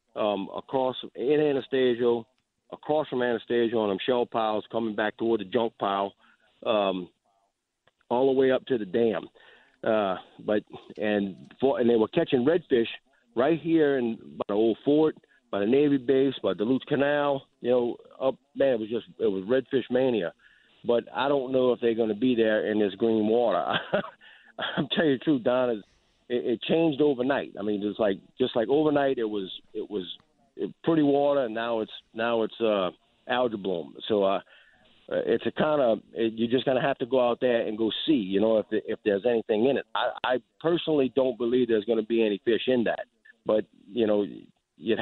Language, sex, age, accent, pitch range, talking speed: English, male, 50-69, American, 110-135 Hz, 195 wpm